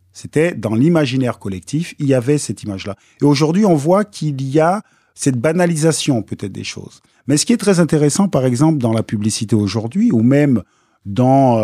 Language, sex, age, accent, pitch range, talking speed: French, male, 40-59, French, 115-165 Hz, 185 wpm